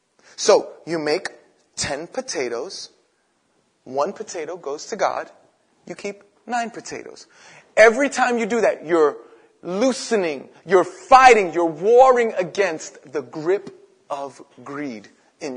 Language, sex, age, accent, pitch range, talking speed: English, male, 30-49, American, 140-220 Hz, 120 wpm